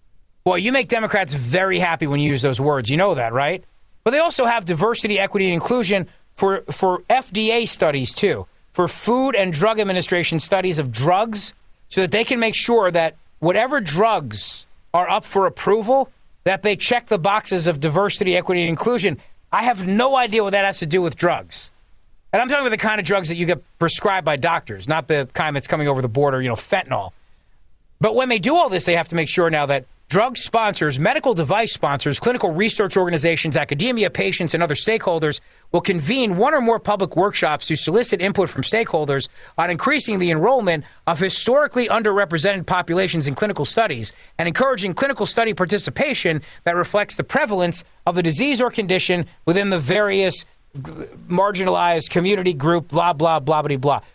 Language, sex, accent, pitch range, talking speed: English, male, American, 155-210 Hz, 185 wpm